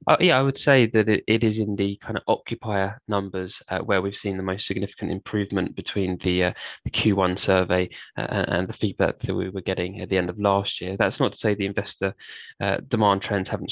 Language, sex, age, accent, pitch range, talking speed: English, male, 20-39, British, 95-110 Hz, 230 wpm